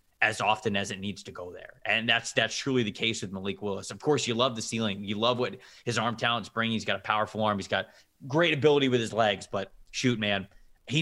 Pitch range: 105-135 Hz